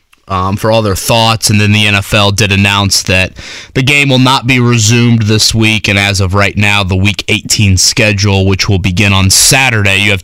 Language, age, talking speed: English, 20-39, 210 wpm